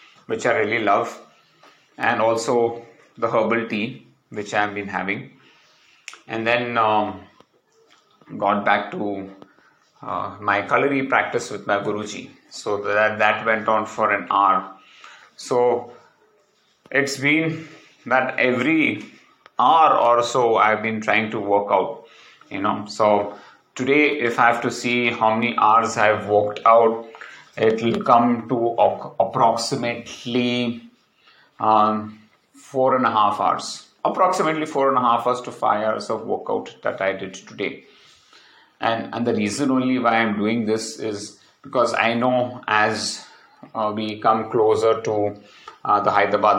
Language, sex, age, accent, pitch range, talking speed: English, male, 30-49, Indian, 105-120 Hz, 145 wpm